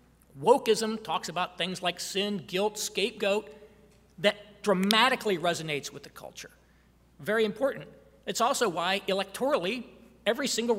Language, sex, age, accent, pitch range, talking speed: English, male, 40-59, American, 175-215 Hz, 120 wpm